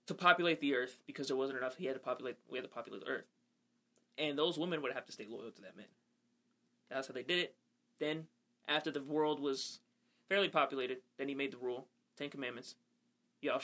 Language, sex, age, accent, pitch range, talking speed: English, male, 20-39, American, 135-220 Hz, 215 wpm